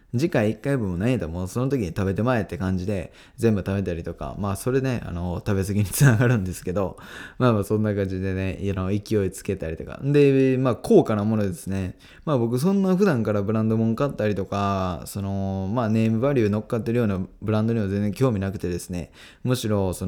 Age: 20-39